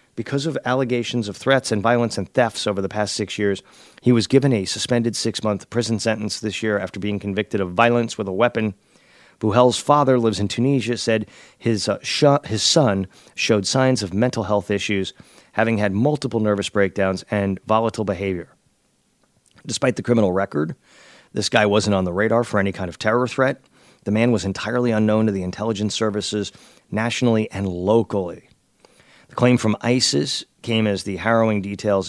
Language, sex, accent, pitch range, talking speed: English, male, American, 100-115 Hz, 175 wpm